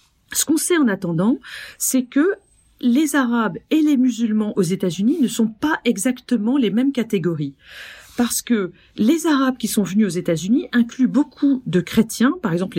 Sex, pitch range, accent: female, 195-265 Hz, French